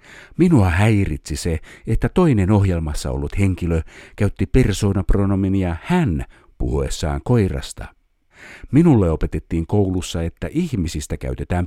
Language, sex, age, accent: Finnish, male, 50-69, native